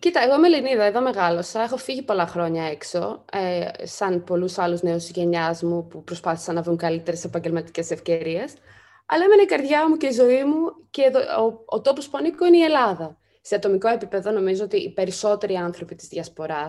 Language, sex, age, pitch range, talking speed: Greek, female, 20-39, 180-255 Hz, 200 wpm